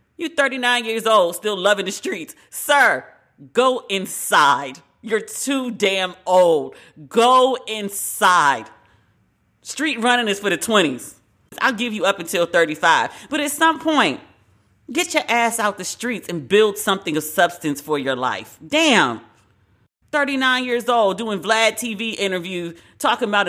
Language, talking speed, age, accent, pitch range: English, 145 wpm, 40-59, American, 195-265 Hz